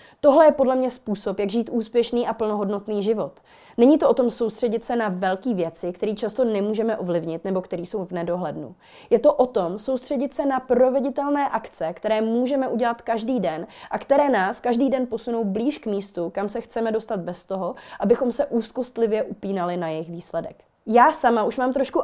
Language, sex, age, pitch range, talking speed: Czech, female, 20-39, 205-250 Hz, 190 wpm